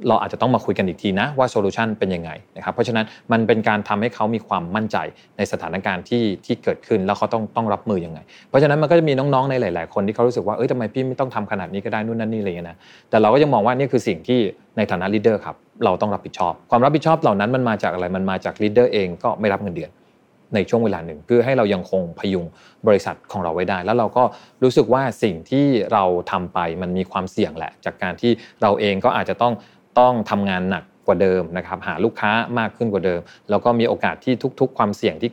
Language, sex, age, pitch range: Thai, male, 20-39, 95-120 Hz